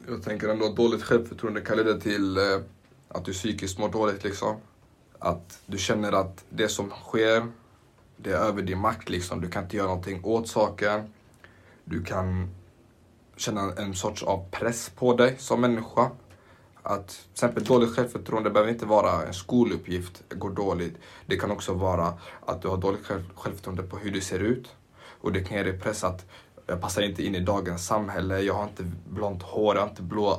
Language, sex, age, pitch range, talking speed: Swedish, male, 20-39, 95-115 Hz, 185 wpm